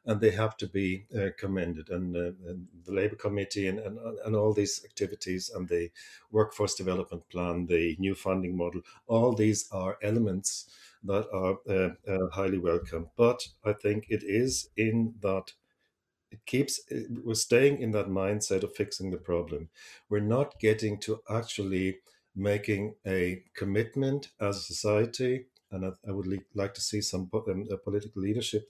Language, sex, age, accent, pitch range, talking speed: English, male, 50-69, German, 95-115 Hz, 170 wpm